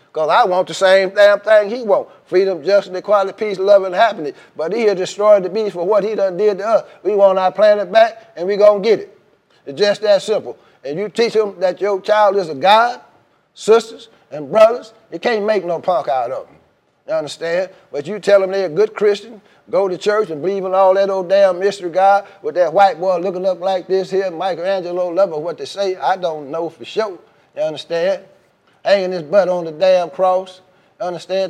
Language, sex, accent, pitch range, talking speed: English, male, American, 185-220 Hz, 220 wpm